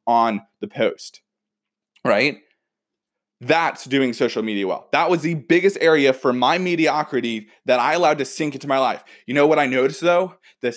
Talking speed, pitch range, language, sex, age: 180 wpm, 115-160 Hz, English, male, 20-39